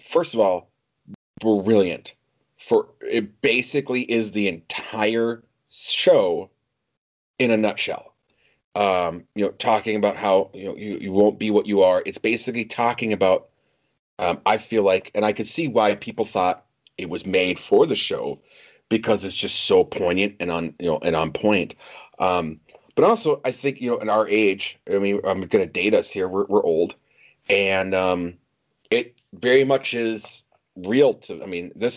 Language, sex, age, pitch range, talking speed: English, male, 30-49, 105-175 Hz, 175 wpm